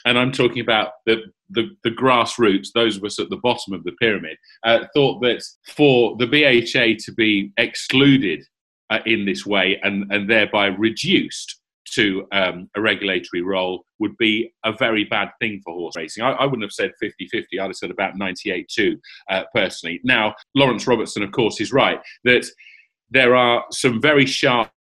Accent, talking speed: British, 175 wpm